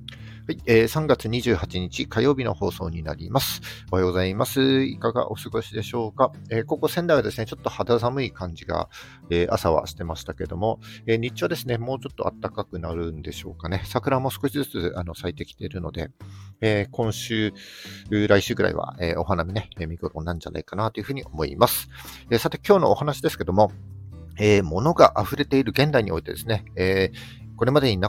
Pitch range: 95-125 Hz